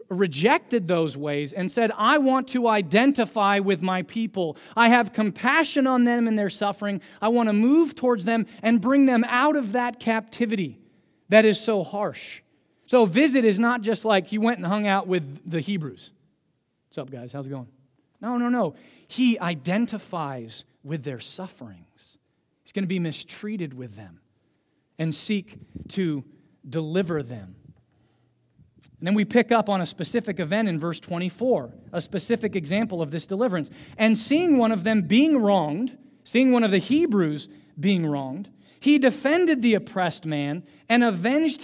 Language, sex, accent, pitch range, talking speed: English, male, American, 170-240 Hz, 170 wpm